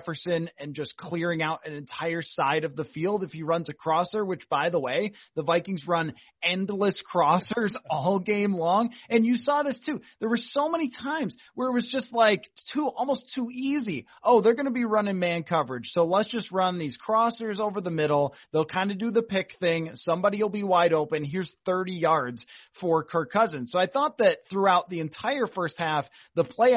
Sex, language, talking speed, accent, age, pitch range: male, English, 205 wpm, American, 30-49, 165-225 Hz